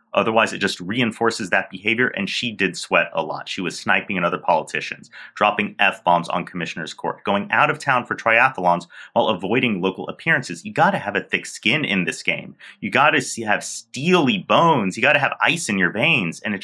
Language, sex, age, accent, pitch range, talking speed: English, male, 30-49, American, 105-155 Hz, 215 wpm